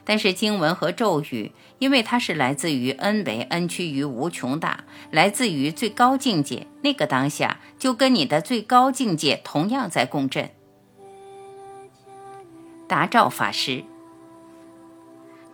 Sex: female